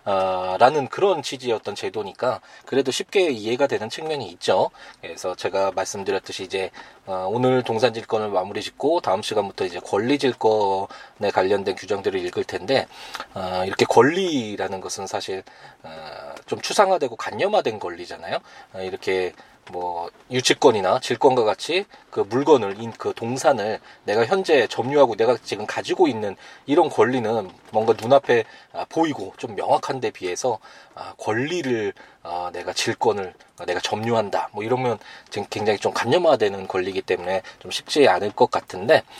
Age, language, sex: 20-39, Korean, male